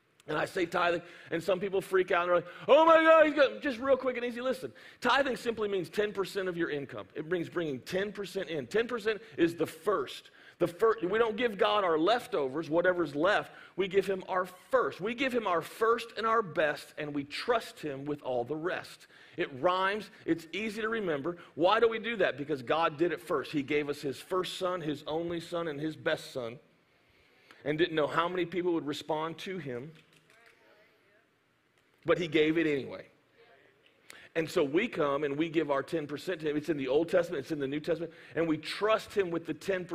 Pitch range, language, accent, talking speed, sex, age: 160-220 Hz, English, American, 210 wpm, male, 40-59